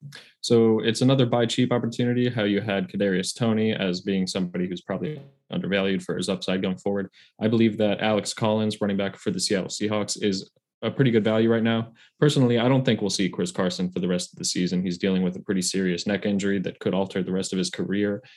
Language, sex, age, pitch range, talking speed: English, male, 20-39, 95-110 Hz, 230 wpm